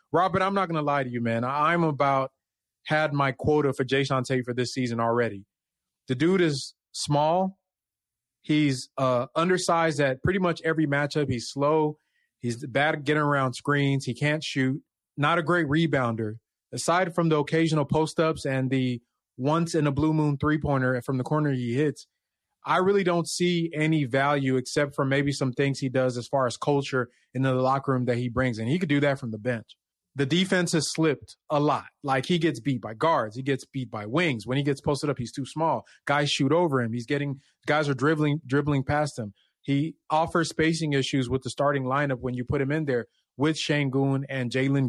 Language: English